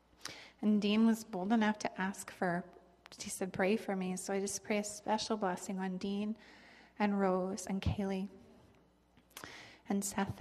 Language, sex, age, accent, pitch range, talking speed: English, female, 30-49, American, 195-225 Hz, 160 wpm